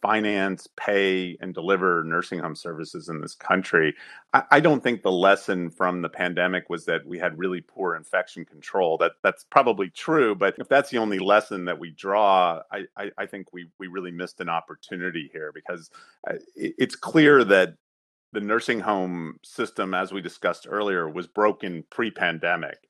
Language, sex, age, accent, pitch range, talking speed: English, male, 30-49, American, 95-130 Hz, 180 wpm